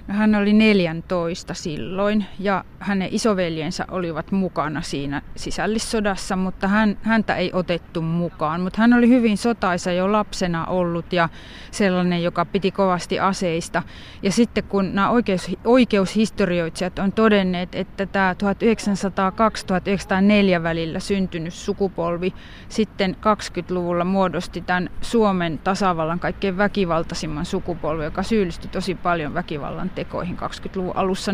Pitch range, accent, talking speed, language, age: 170-200 Hz, native, 115 wpm, Finnish, 30-49